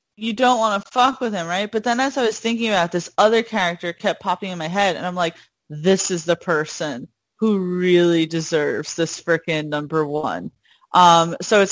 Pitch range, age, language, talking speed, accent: 170-215 Hz, 30-49, English, 205 wpm, American